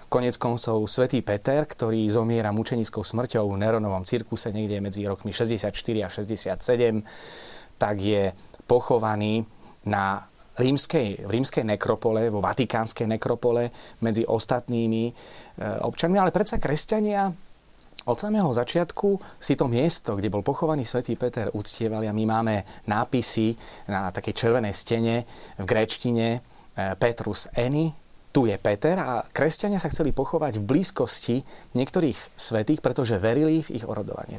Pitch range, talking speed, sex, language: 110-135 Hz, 130 wpm, male, Slovak